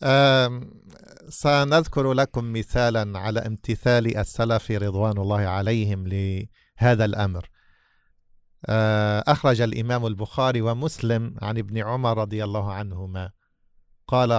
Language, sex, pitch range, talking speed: English, male, 110-140 Hz, 90 wpm